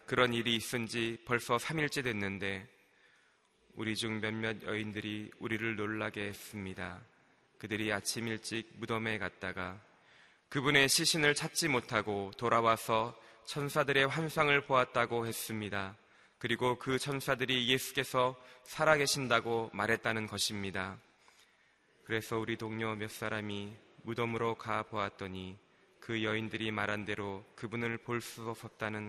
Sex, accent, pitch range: male, native, 105-130 Hz